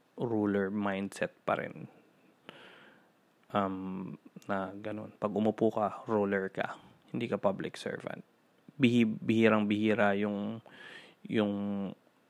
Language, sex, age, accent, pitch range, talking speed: Filipino, male, 20-39, native, 100-110 Hz, 100 wpm